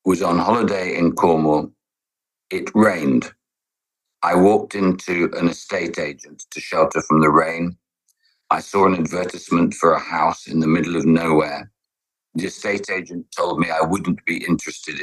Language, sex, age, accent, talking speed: English, male, 60-79, British, 155 wpm